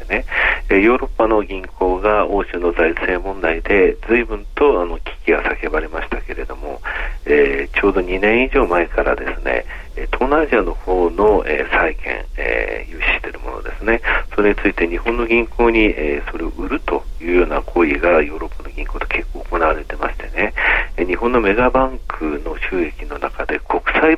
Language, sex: Japanese, male